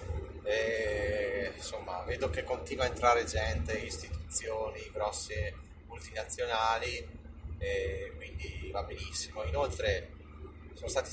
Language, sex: Italian, male